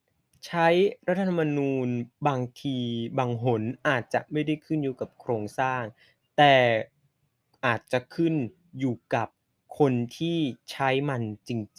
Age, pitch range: 20-39, 125-150 Hz